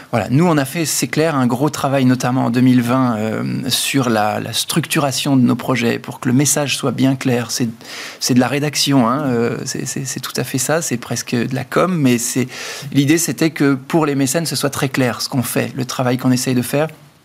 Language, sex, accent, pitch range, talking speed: French, male, French, 130-150 Hz, 235 wpm